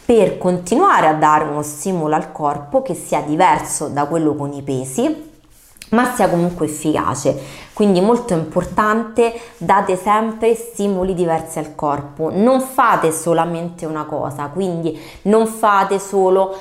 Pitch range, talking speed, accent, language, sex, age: 160-210 Hz, 140 wpm, native, Italian, female, 20-39